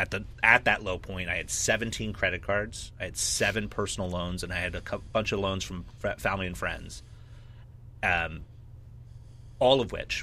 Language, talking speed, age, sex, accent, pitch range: English, 195 wpm, 30-49, male, American, 90-115 Hz